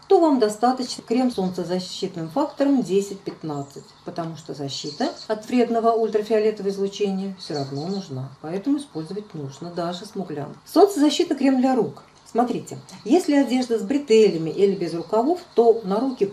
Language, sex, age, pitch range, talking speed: Russian, female, 40-59, 175-255 Hz, 140 wpm